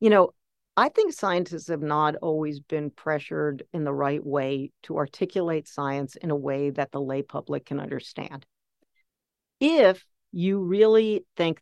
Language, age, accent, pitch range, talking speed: English, 50-69, American, 150-200 Hz, 155 wpm